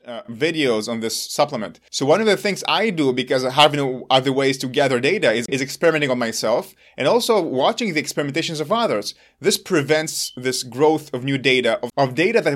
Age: 30-49